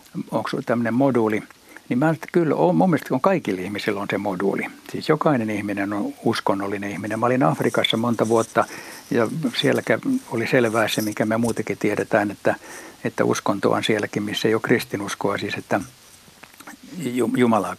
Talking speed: 155 wpm